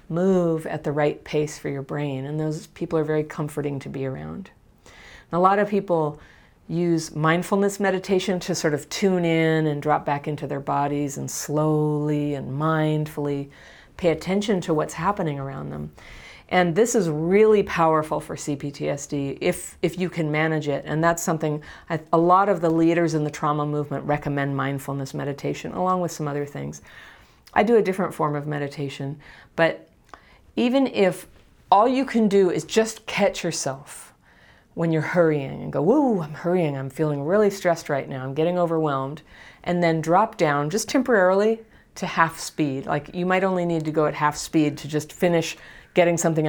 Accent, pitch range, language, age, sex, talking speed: American, 145-175 Hz, English, 40-59, female, 180 wpm